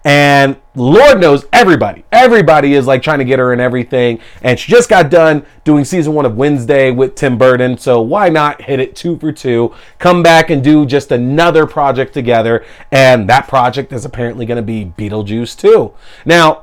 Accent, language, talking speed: American, English, 190 wpm